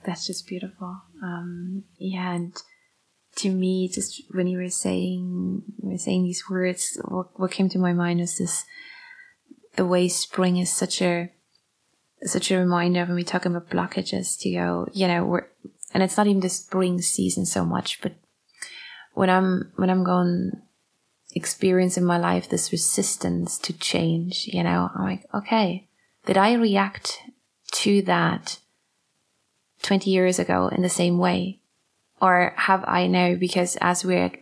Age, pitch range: 20-39, 170-185 Hz